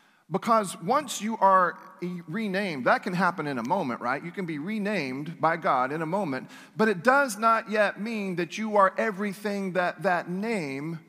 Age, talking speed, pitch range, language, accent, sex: 40-59, 185 wpm, 175-220 Hz, English, American, male